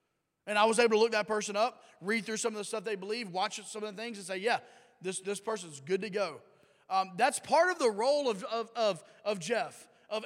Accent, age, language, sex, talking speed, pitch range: American, 30-49, English, male, 255 wpm, 205-250 Hz